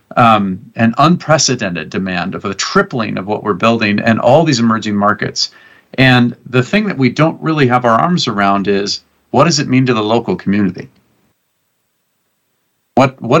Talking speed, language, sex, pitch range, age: 170 wpm, English, male, 105-135 Hz, 40-59